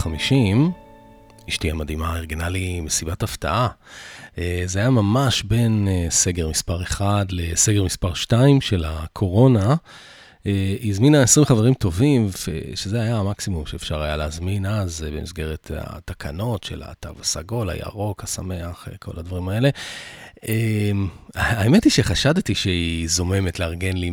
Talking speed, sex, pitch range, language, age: 120 wpm, male, 85-110 Hz, Hebrew, 30-49